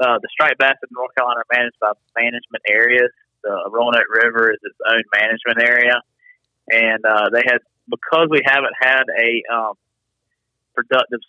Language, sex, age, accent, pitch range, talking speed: English, male, 30-49, American, 115-140 Hz, 165 wpm